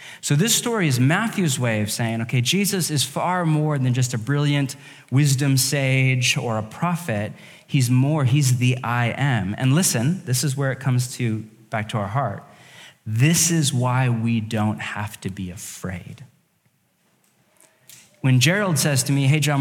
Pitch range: 115-150 Hz